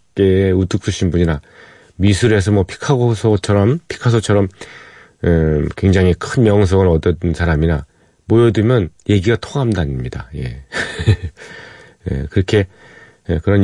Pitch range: 85-110 Hz